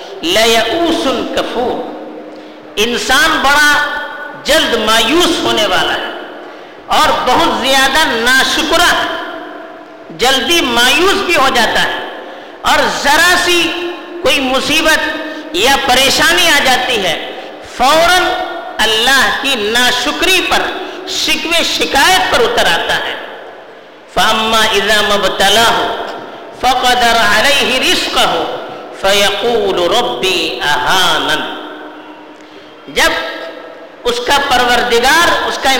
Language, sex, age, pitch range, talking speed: Urdu, female, 50-69, 250-345 Hz, 90 wpm